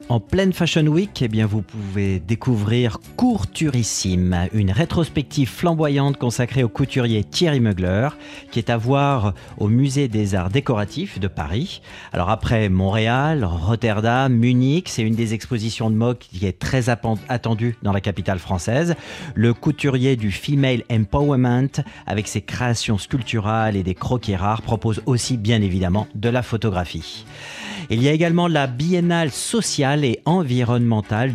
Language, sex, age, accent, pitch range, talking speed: French, male, 40-59, French, 105-135 Hz, 145 wpm